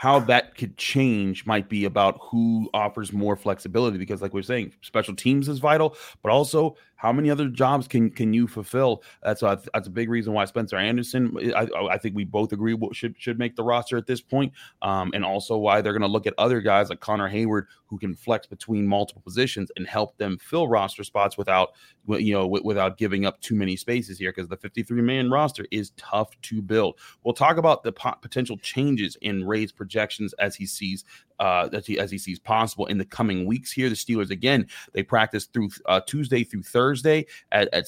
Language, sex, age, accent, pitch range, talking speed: English, male, 30-49, American, 100-120 Hz, 215 wpm